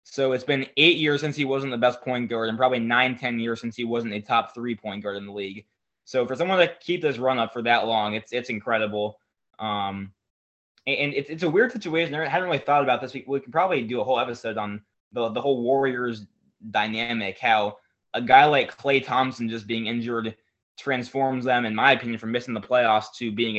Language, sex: English, male